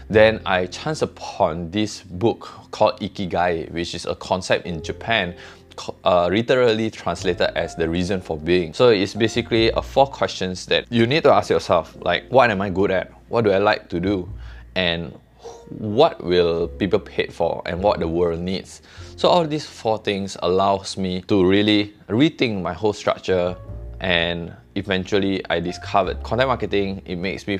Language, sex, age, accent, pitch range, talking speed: English, male, 20-39, Malaysian, 85-100 Hz, 170 wpm